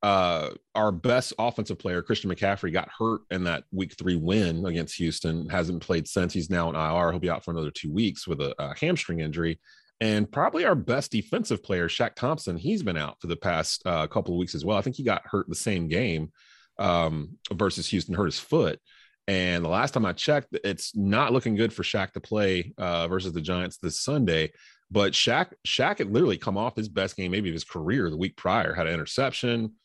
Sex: male